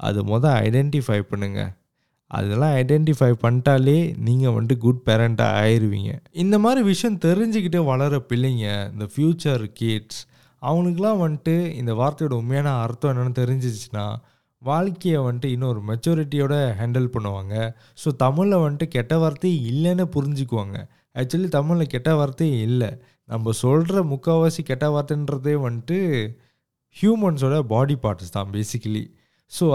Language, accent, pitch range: Tamil, native, 115-155 Hz